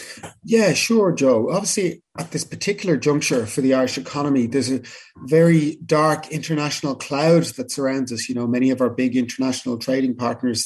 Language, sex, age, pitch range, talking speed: English, male, 30-49, 130-160 Hz, 170 wpm